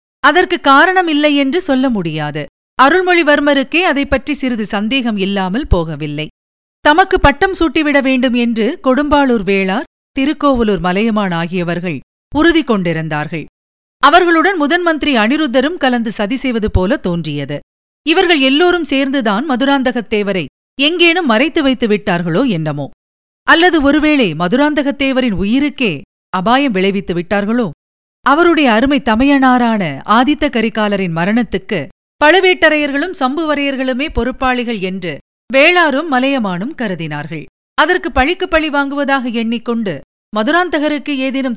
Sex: female